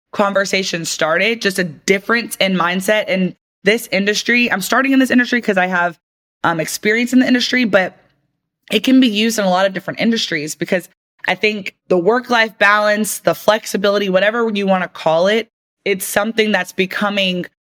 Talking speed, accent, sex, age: 175 wpm, American, female, 20-39